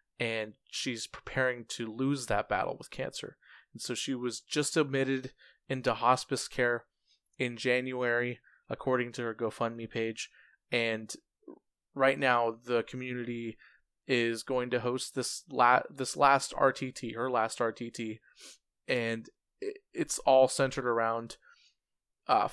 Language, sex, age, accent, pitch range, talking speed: English, male, 20-39, American, 120-140 Hz, 130 wpm